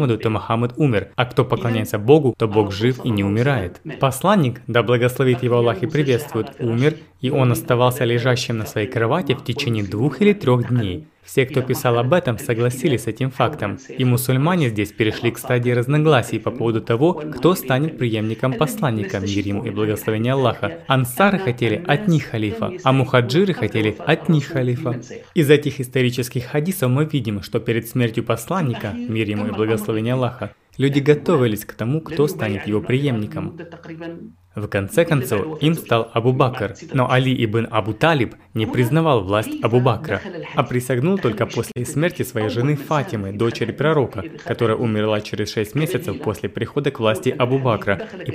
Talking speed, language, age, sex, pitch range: 165 wpm, Russian, 20-39, male, 110-145 Hz